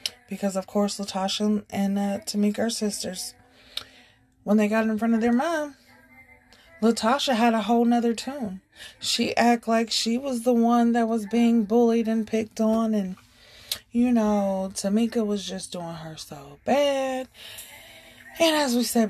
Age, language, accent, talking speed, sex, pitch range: 20-39, English, American, 160 wpm, female, 210-265 Hz